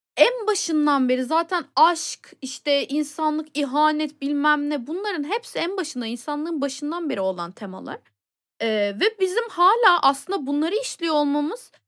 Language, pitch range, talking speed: Turkish, 250-345 Hz, 135 wpm